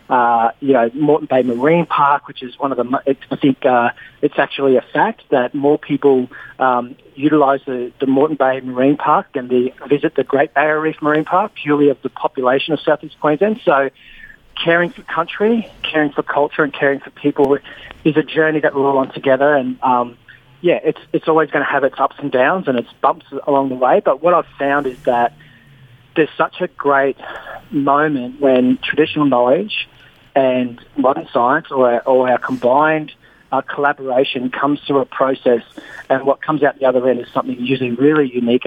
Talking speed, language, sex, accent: 190 wpm, English, male, Australian